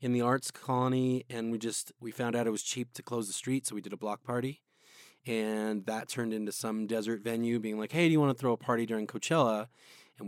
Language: English